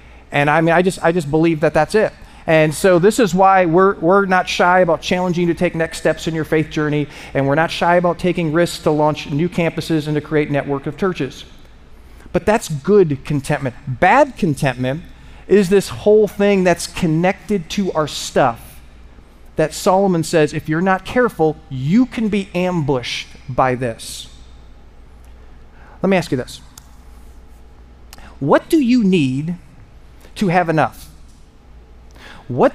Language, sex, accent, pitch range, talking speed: English, male, American, 125-190 Hz, 165 wpm